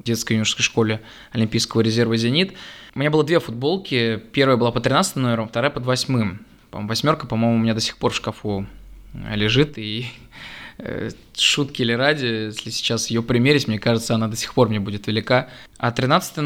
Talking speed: 180 wpm